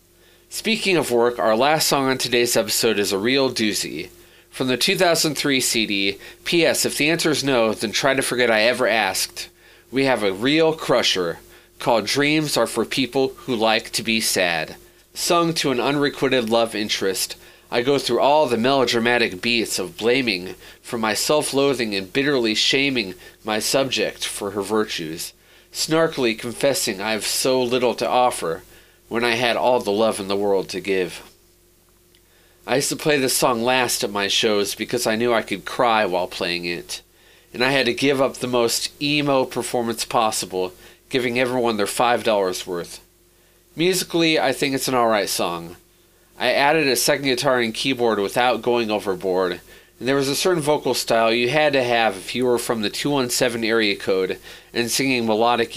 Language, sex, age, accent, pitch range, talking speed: English, male, 30-49, American, 110-135 Hz, 175 wpm